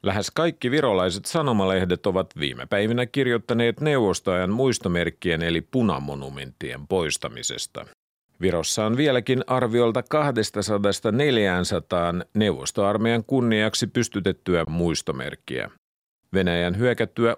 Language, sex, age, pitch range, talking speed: Finnish, male, 50-69, 85-120 Hz, 85 wpm